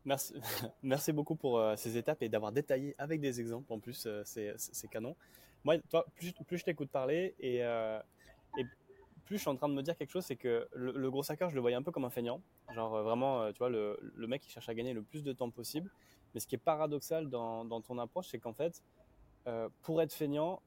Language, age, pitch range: French, 20-39, 120-150 Hz